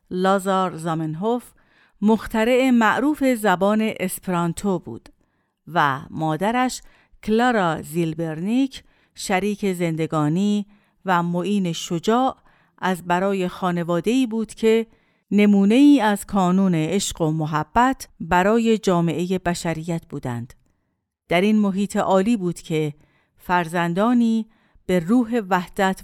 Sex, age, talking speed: female, 50-69, 100 wpm